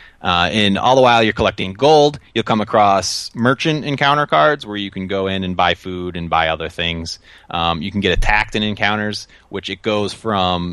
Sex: male